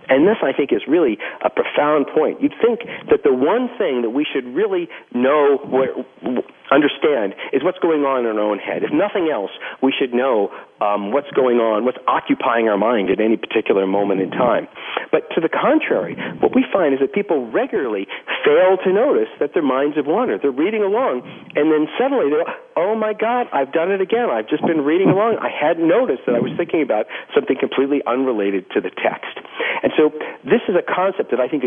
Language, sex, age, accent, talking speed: English, male, 50-69, American, 210 wpm